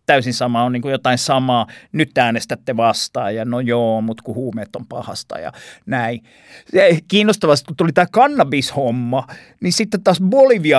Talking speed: 155 wpm